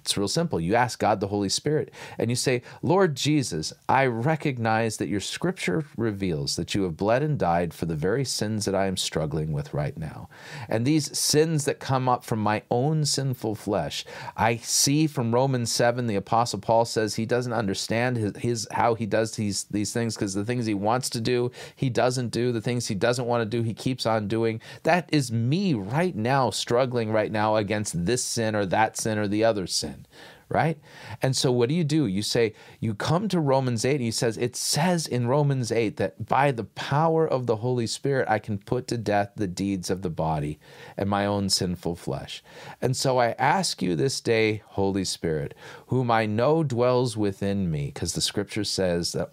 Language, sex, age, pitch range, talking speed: English, male, 40-59, 105-135 Hz, 210 wpm